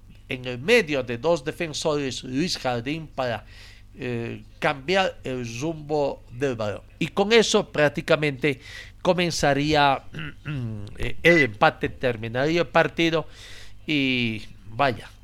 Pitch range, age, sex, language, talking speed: 115-160 Hz, 50-69, male, Spanish, 105 wpm